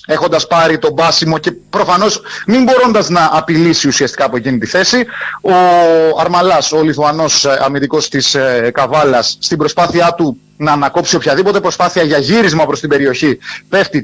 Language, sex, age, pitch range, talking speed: Greek, male, 30-49, 140-175 Hz, 155 wpm